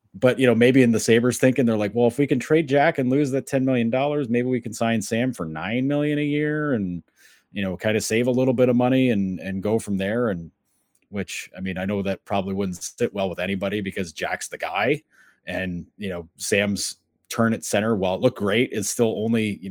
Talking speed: 240 wpm